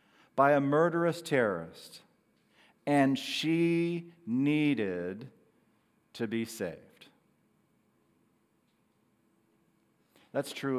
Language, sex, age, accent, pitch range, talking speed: English, male, 40-59, American, 150-195 Hz, 65 wpm